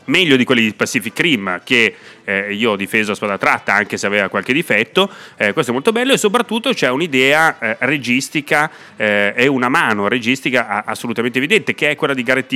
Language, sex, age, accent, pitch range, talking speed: Italian, male, 30-49, native, 110-155 Hz, 200 wpm